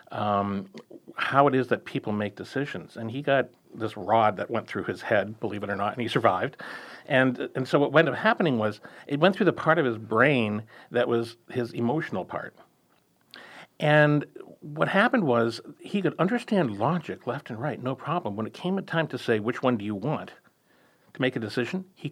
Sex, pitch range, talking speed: male, 115-165 Hz, 205 wpm